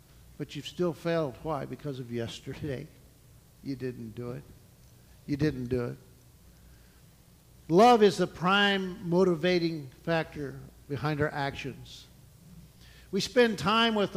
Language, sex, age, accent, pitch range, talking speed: English, male, 50-69, American, 135-180 Hz, 125 wpm